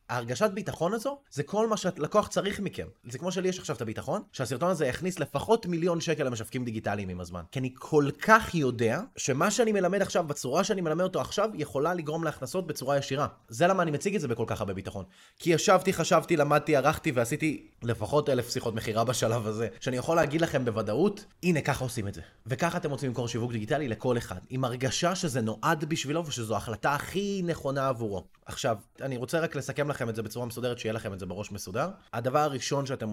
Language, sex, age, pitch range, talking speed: Hebrew, male, 20-39, 115-170 Hz, 205 wpm